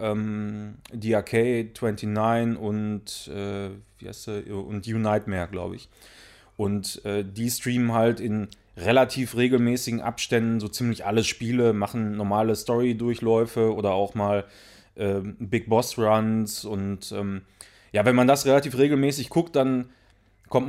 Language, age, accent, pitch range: German, 30-49, German, 105-130 Hz